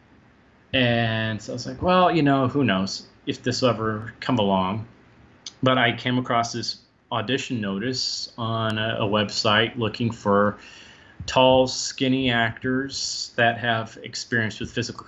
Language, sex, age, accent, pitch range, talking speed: English, male, 30-49, American, 105-130 Hz, 145 wpm